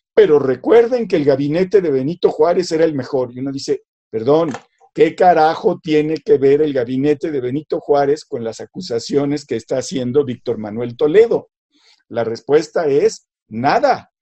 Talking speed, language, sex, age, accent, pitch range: 160 wpm, Spanish, male, 50-69, Mexican, 135-220 Hz